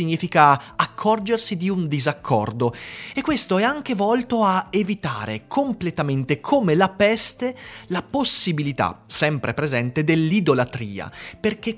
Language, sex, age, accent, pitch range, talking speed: Italian, male, 30-49, native, 125-195 Hz, 110 wpm